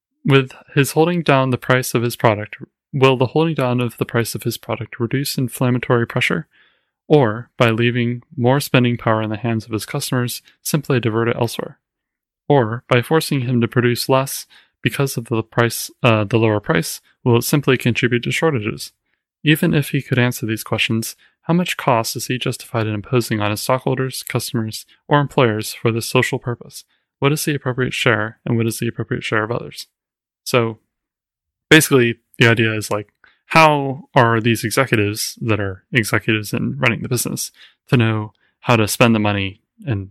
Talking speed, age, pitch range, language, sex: 185 wpm, 20-39, 110-130 Hz, English, male